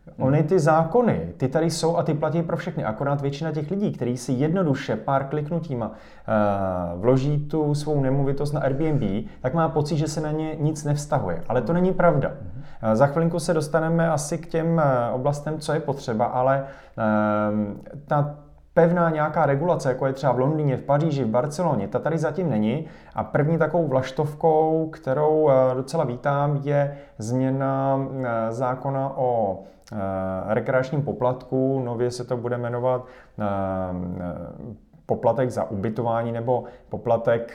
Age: 30-49